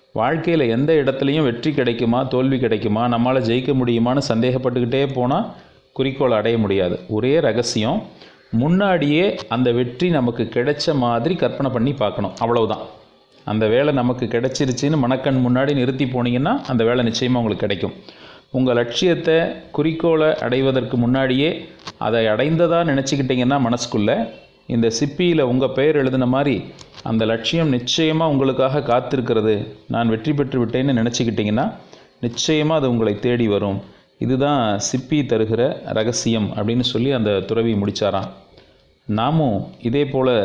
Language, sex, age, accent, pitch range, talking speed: Tamil, male, 30-49, native, 115-140 Hz, 120 wpm